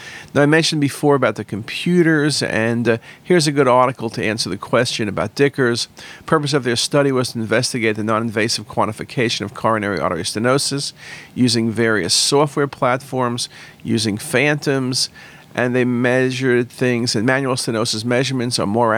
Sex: male